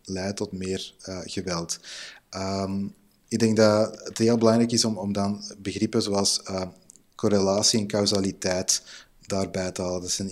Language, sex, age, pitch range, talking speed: Dutch, male, 30-49, 100-110 Hz, 150 wpm